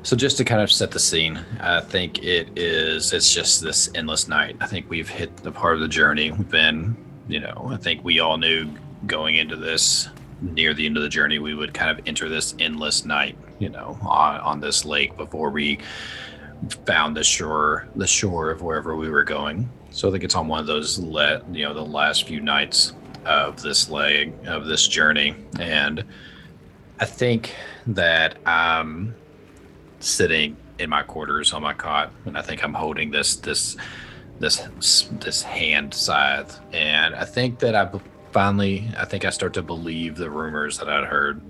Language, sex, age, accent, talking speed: English, male, 30-49, American, 190 wpm